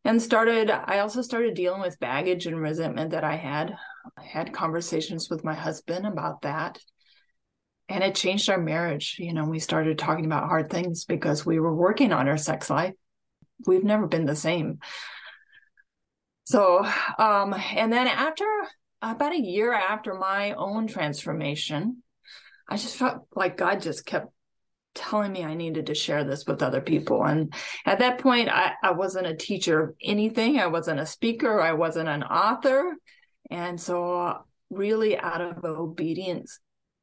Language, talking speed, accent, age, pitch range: English, 165 wpm, American, 30-49, 160-215 Hz